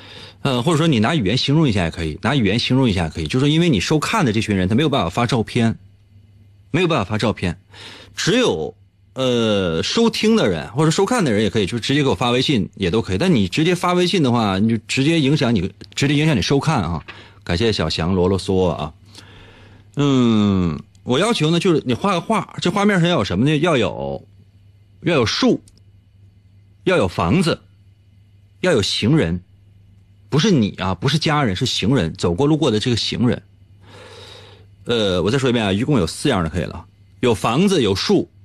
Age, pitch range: 30-49, 100-120 Hz